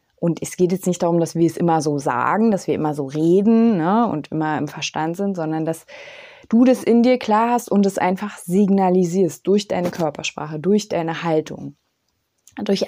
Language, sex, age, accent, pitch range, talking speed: German, female, 20-39, German, 165-210 Hz, 195 wpm